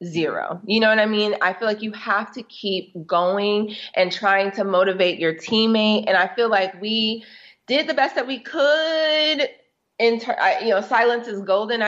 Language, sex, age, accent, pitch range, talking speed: English, female, 30-49, American, 185-240 Hz, 195 wpm